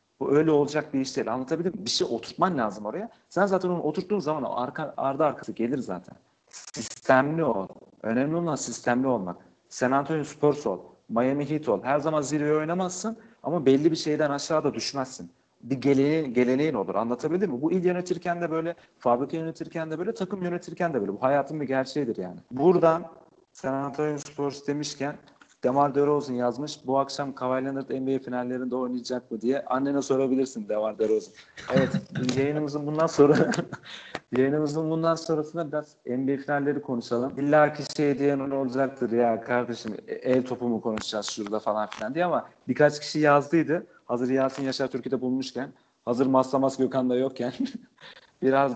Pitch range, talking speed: 125-155 Hz, 155 wpm